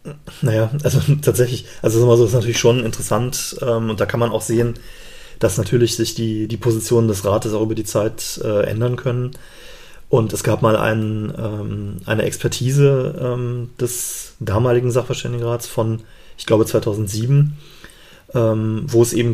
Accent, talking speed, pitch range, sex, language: German, 155 wpm, 110-120 Hz, male, German